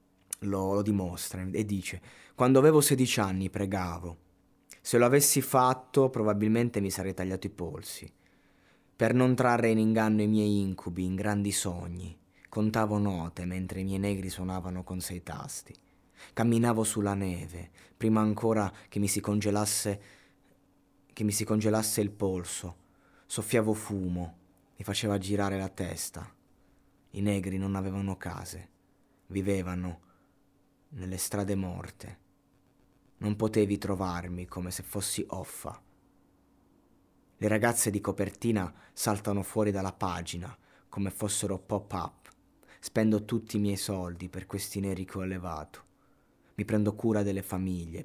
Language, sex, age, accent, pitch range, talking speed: Italian, male, 20-39, native, 90-105 Hz, 130 wpm